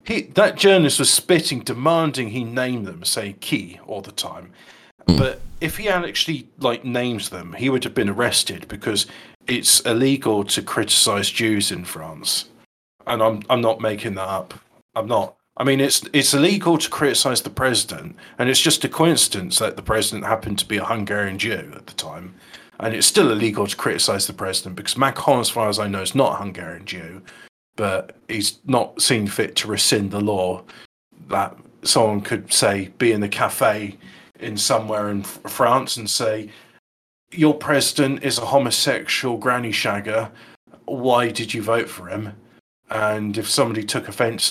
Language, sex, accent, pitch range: English, male, British, 105-130 Hz